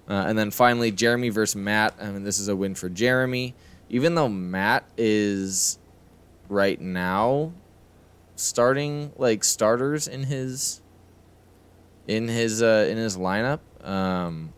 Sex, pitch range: male, 90-110 Hz